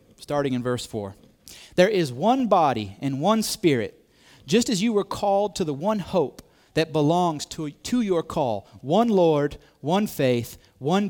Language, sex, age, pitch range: English, male, 30-49, 125-180 Hz